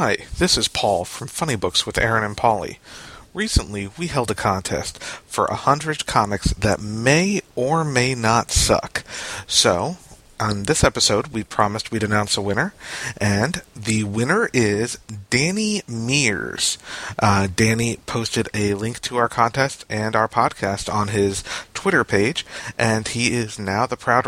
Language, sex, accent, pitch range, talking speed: English, male, American, 110-145 Hz, 155 wpm